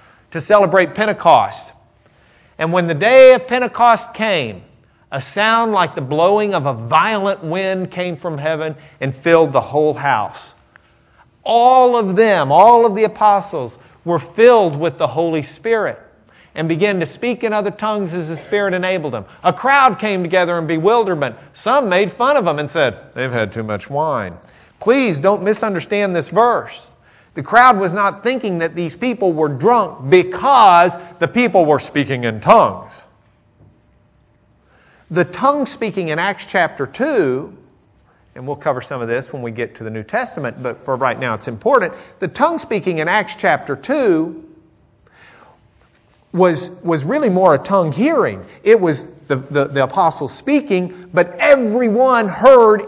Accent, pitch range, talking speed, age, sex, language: American, 160-225 Hz, 160 wpm, 50-69, male, English